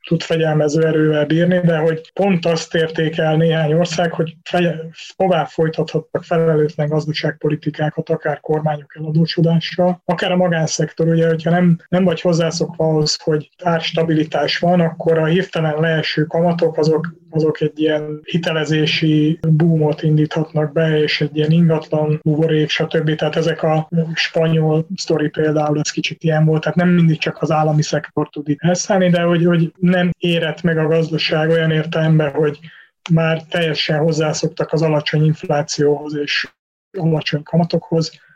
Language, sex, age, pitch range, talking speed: Hungarian, male, 30-49, 155-165 Hz, 140 wpm